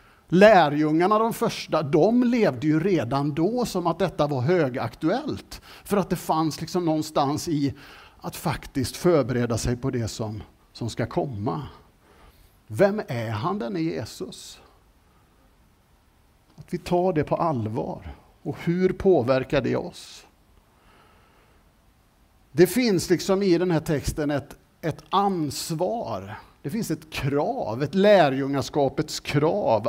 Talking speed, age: 130 wpm, 50-69